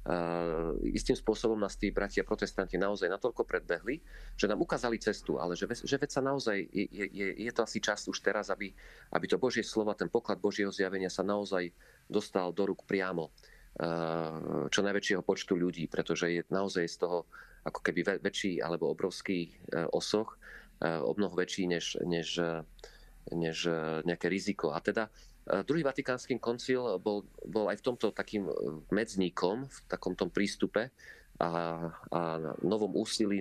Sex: male